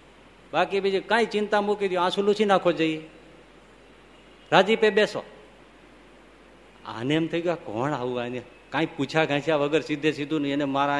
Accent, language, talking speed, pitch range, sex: native, Gujarati, 75 wpm, 145-195 Hz, male